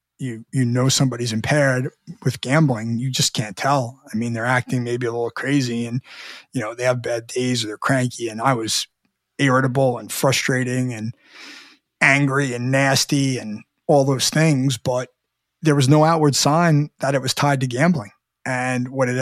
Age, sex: 20-39, male